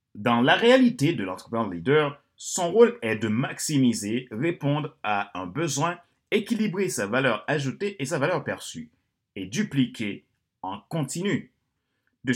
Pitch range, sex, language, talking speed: 115-170 Hz, male, French, 135 wpm